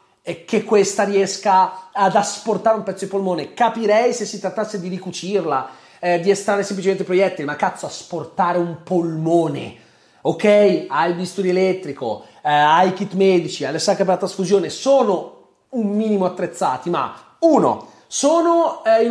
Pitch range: 170-215 Hz